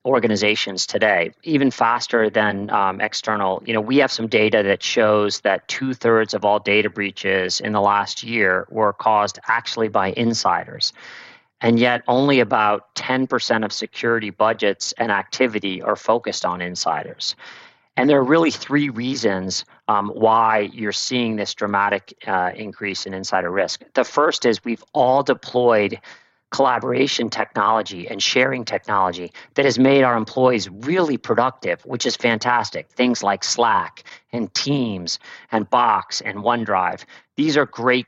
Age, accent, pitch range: 40-59, American, 105-125 Hz